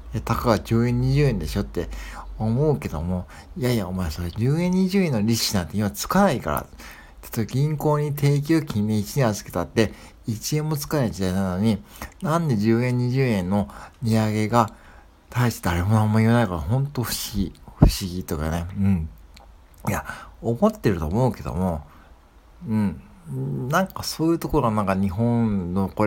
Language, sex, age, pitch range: Japanese, male, 60-79, 90-125 Hz